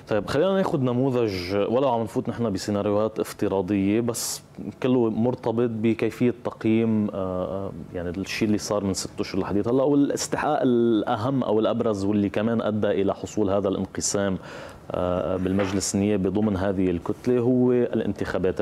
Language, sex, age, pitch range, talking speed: Arabic, male, 30-49, 95-120 Hz, 135 wpm